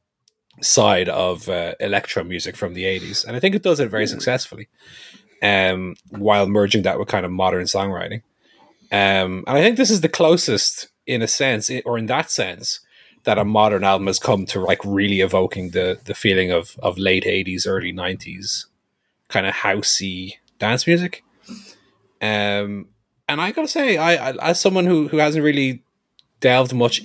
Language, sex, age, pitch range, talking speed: English, male, 30-49, 100-135 Hz, 175 wpm